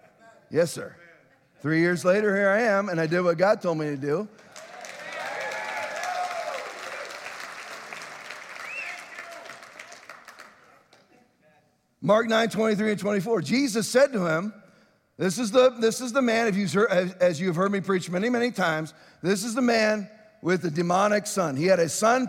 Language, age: English, 50-69